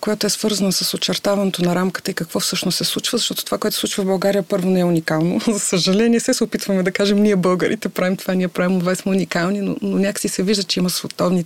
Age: 30-49